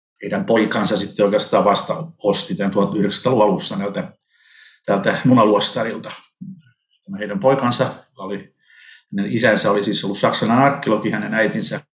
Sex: male